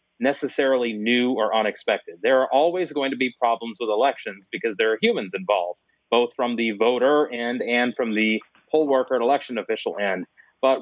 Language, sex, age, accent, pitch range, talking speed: English, male, 30-49, American, 115-135 Hz, 185 wpm